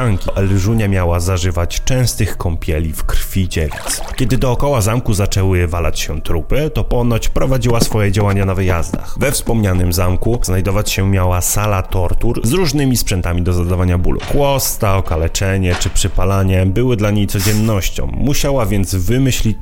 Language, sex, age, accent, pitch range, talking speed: Polish, male, 30-49, native, 90-115 Hz, 145 wpm